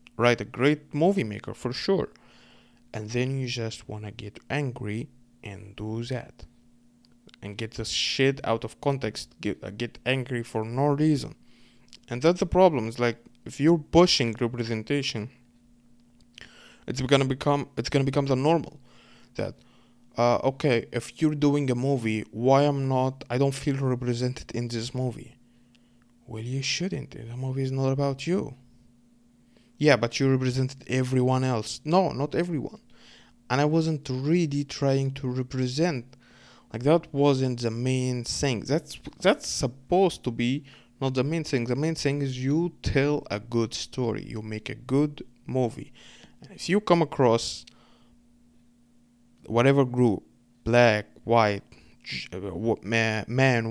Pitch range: 120-140 Hz